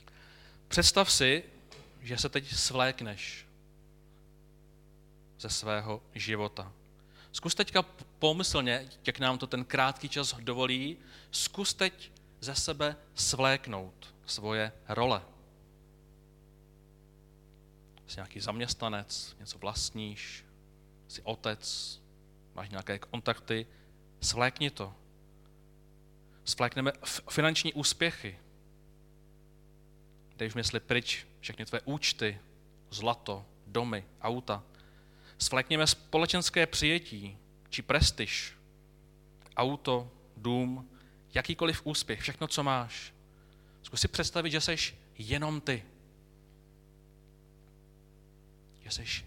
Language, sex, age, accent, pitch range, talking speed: Czech, male, 30-49, native, 105-145 Hz, 85 wpm